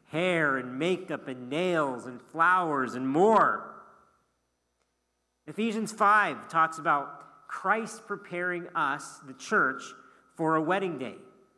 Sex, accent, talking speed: male, American, 115 wpm